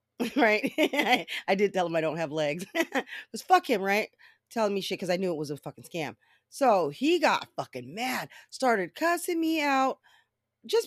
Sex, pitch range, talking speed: female, 170-280 Hz, 190 wpm